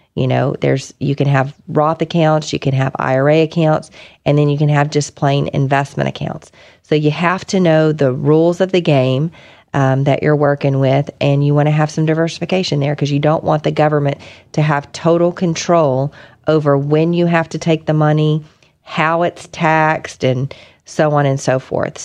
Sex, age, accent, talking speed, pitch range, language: female, 40-59, American, 195 wpm, 135-160 Hz, English